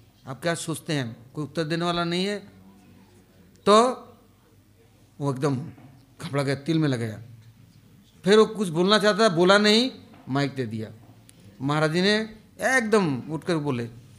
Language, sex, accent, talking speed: English, male, Indian, 140 wpm